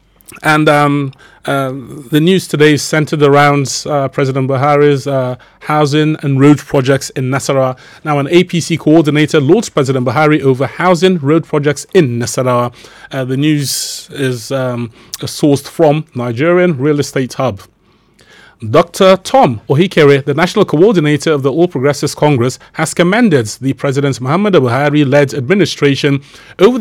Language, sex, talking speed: English, male, 140 wpm